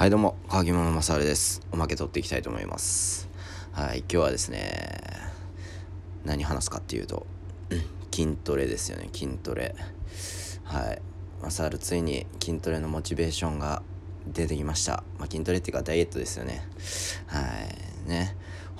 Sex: male